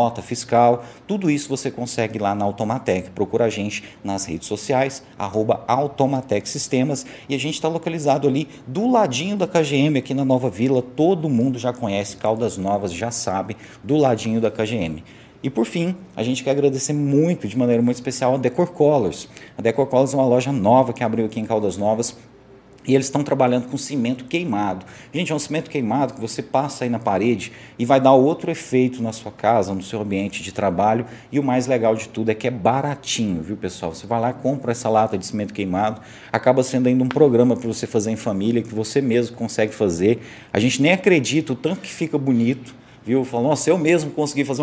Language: Portuguese